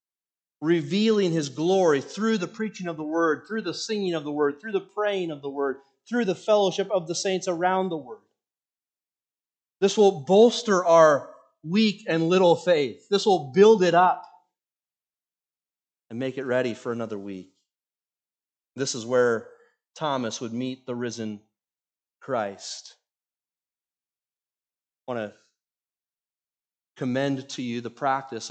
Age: 30-49